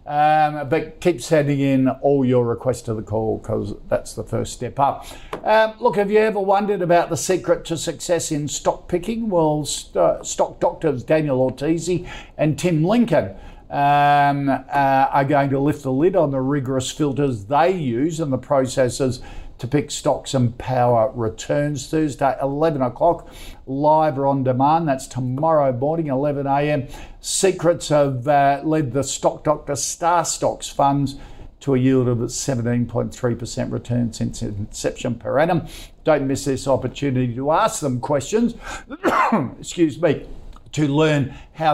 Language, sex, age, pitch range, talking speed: English, male, 50-69, 130-160 Hz, 155 wpm